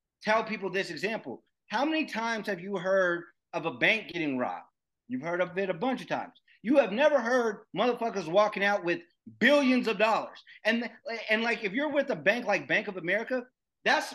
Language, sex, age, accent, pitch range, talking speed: English, male, 30-49, American, 180-220 Hz, 200 wpm